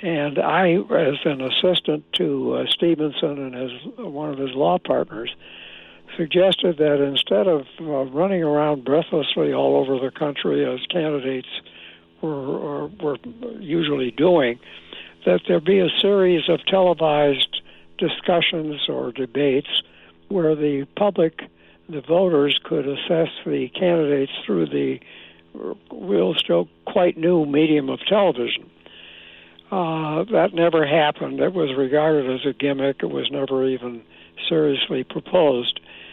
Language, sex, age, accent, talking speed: English, male, 60-79, American, 125 wpm